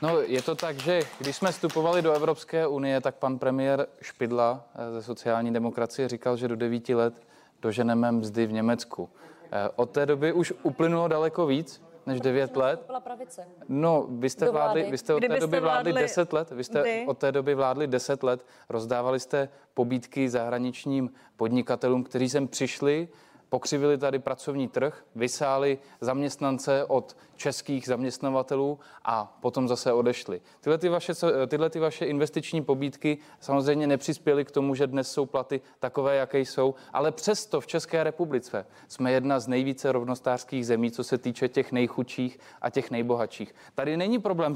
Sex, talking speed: male, 155 wpm